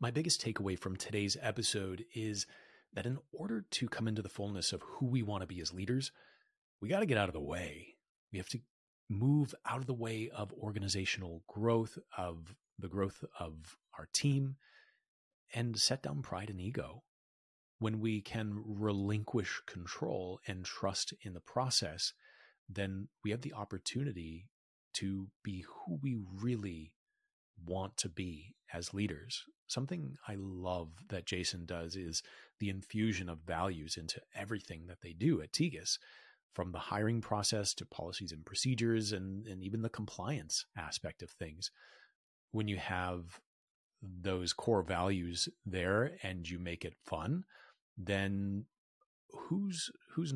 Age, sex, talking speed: 30-49, male, 155 wpm